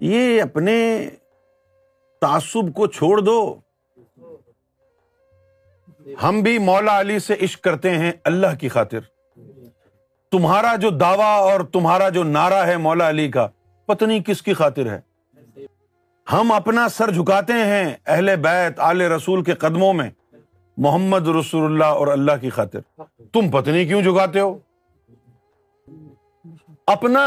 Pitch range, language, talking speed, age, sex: 140-230 Hz, Urdu, 130 wpm, 50-69, male